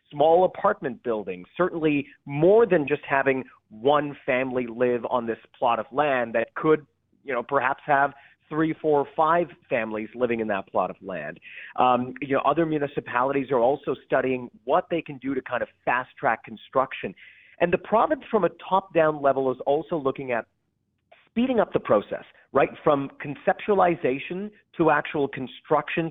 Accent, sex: American, male